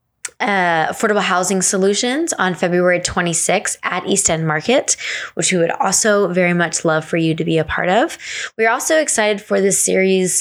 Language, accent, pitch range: English, American, 160-195 Hz